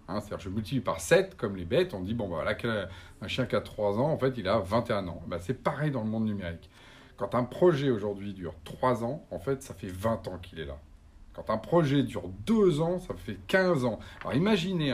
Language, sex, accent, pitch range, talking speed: French, male, French, 95-145 Hz, 255 wpm